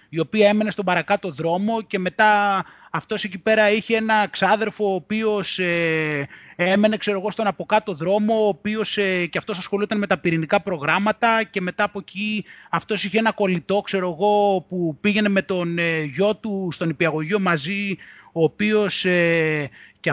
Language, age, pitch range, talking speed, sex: Greek, 20-39, 165-215 Hz, 165 wpm, male